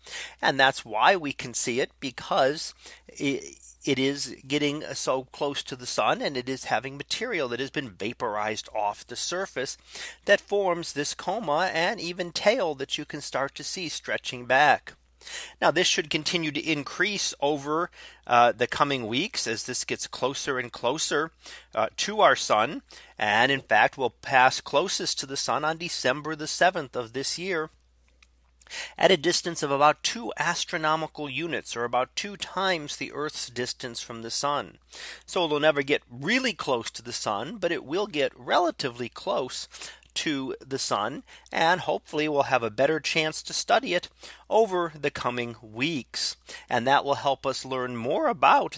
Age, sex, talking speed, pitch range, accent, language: 30-49, male, 170 wpm, 125-160 Hz, American, English